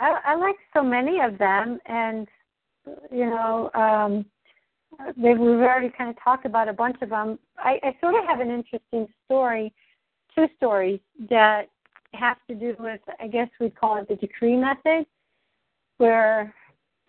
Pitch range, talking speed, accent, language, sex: 205-240 Hz, 160 wpm, American, English, female